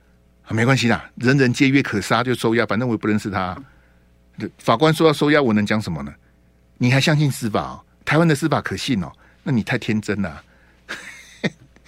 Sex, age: male, 50-69